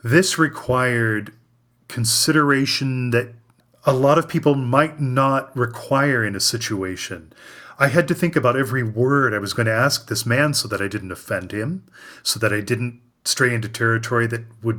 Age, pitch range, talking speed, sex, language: 30-49, 115-135 Hz, 175 wpm, male, English